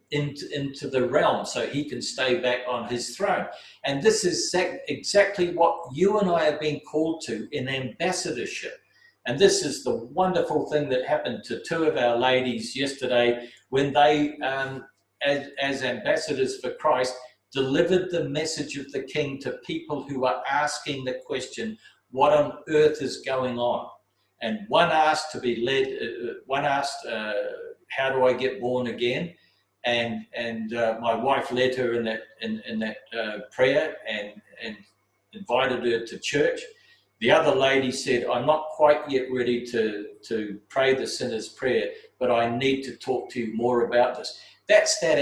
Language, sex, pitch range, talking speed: English, male, 125-170 Hz, 170 wpm